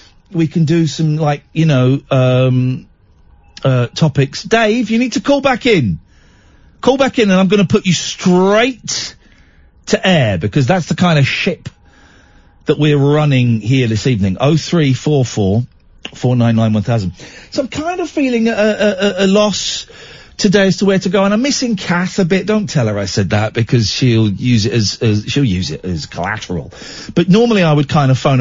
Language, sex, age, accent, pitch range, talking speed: English, male, 40-59, British, 115-190 Hz, 185 wpm